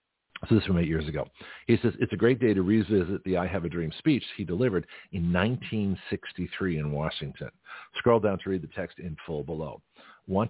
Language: English